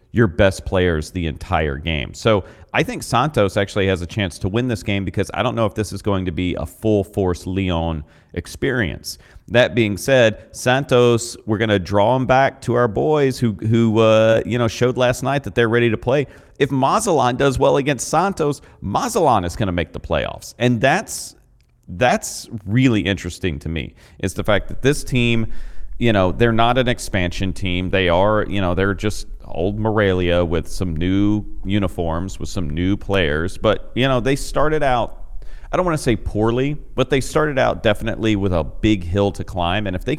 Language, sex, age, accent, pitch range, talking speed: English, male, 40-59, American, 95-125 Hz, 195 wpm